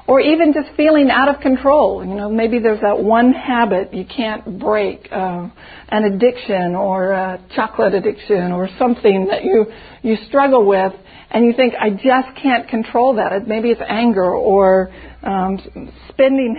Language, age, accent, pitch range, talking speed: English, 60-79, American, 200-245 Hz, 165 wpm